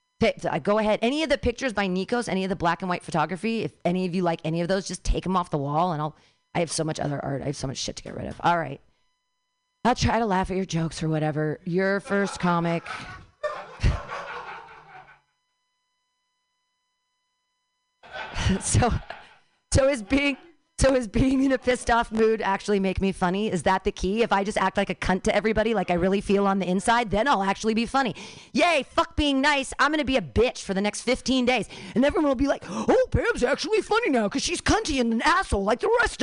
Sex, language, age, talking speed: female, English, 30-49, 220 wpm